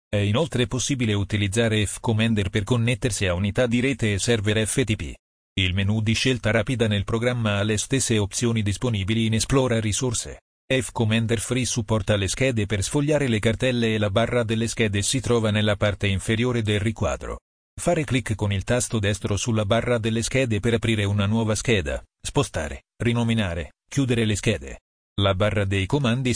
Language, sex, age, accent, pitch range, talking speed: Italian, male, 40-59, native, 105-120 Hz, 170 wpm